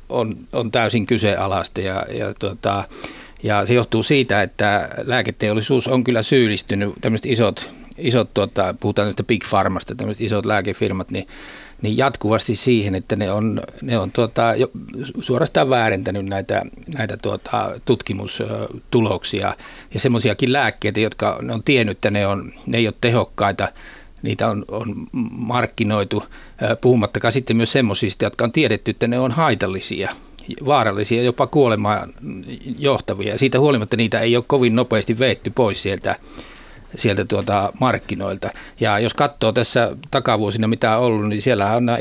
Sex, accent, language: male, native, Finnish